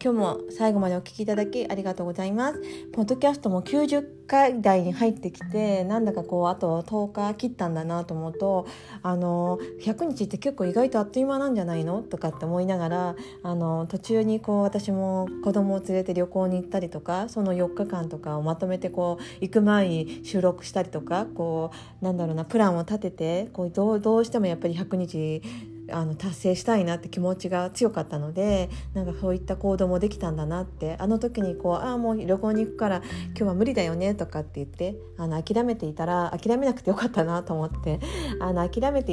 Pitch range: 170-215 Hz